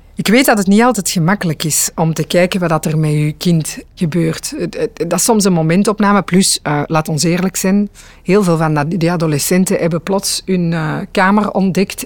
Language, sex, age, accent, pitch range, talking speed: Dutch, female, 50-69, Dutch, 160-205 Hz, 185 wpm